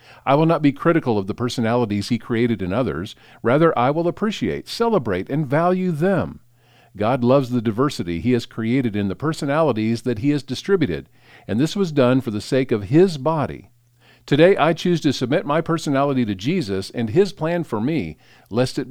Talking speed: 190 wpm